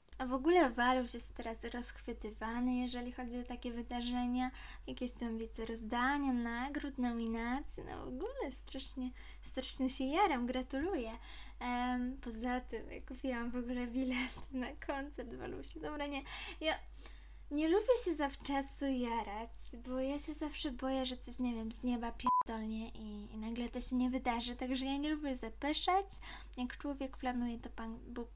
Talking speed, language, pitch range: 155 wpm, Polish, 240-290 Hz